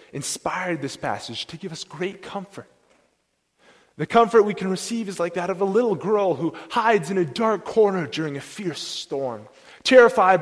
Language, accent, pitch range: English, American, 145-195 Hz